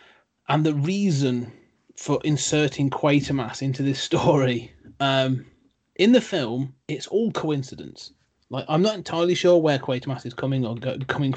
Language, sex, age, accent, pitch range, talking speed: English, male, 30-49, British, 130-155 Hz, 150 wpm